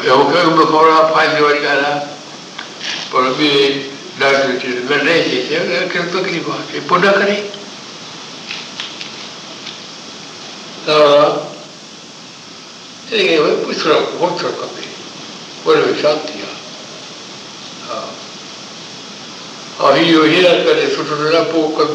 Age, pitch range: 60-79, 145-180 Hz